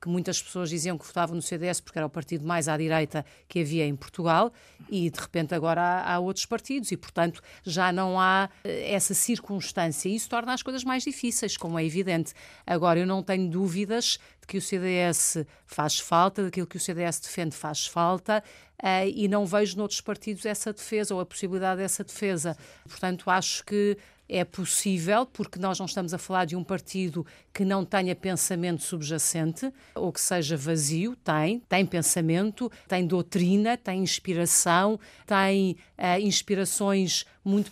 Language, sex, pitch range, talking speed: Portuguese, female, 170-205 Hz, 165 wpm